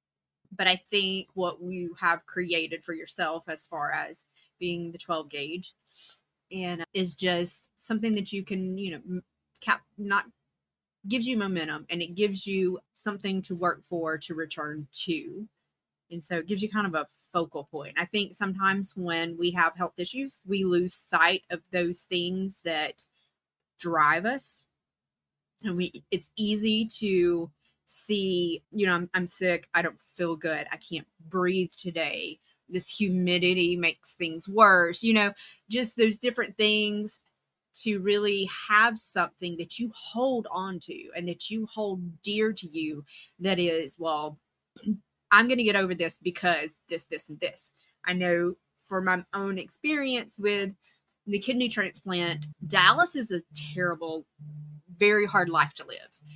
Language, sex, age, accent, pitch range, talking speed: English, female, 20-39, American, 170-205 Hz, 155 wpm